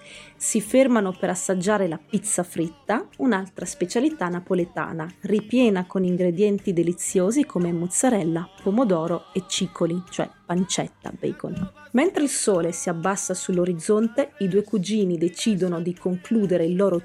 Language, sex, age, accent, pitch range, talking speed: English, female, 30-49, Italian, 180-230 Hz, 125 wpm